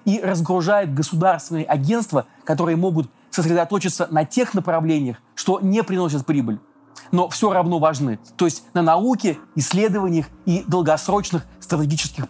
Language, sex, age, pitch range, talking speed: Russian, male, 30-49, 155-195 Hz, 125 wpm